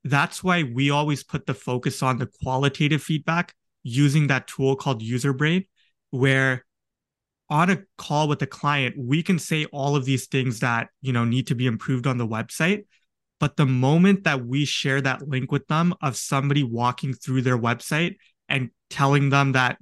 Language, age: English, 20-39